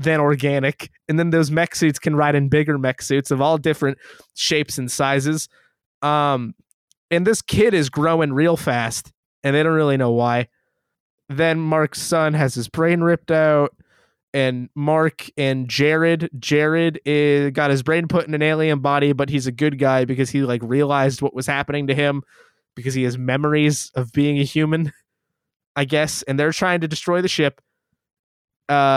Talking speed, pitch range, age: 180 wpm, 135-155 Hz, 20-39